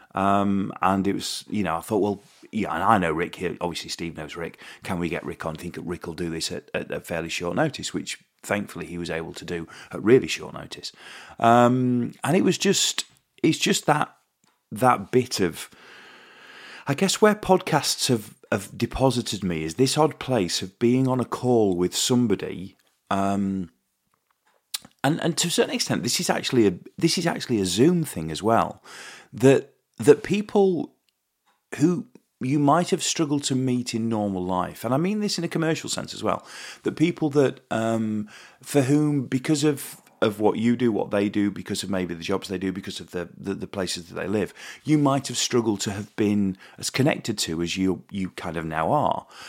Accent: British